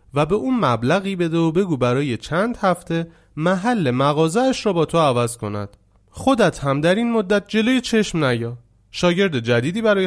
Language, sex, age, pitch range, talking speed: Persian, male, 30-49, 115-180 Hz, 165 wpm